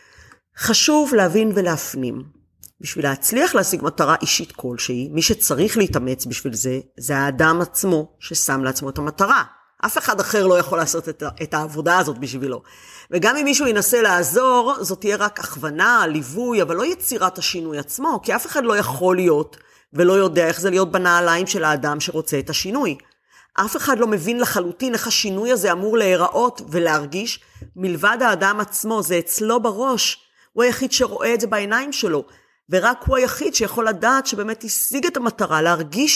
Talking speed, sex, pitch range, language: 165 wpm, female, 155-225 Hz, Hebrew